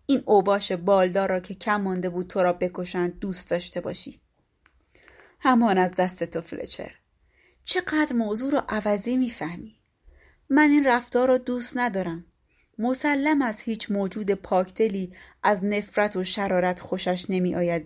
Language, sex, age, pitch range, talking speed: Persian, female, 30-49, 185-240 Hz, 135 wpm